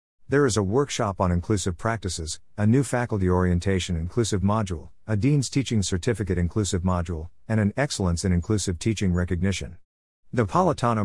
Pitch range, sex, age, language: 85-115 Hz, male, 50-69, English